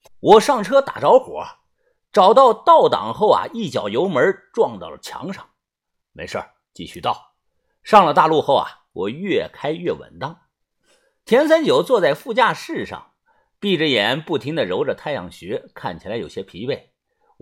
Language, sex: Chinese, male